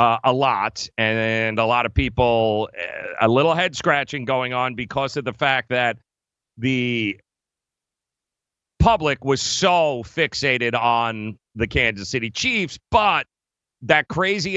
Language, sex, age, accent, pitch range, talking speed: English, male, 40-59, American, 120-155 Hz, 140 wpm